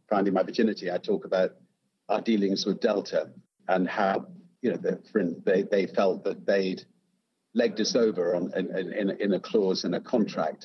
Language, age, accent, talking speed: English, 50-69, British, 180 wpm